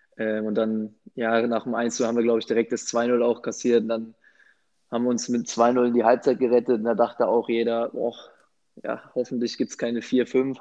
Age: 20-39